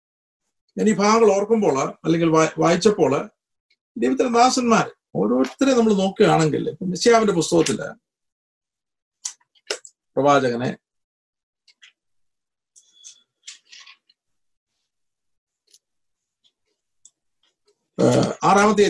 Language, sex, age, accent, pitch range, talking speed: Malayalam, male, 50-69, native, 150-230 Hz, 55 wpm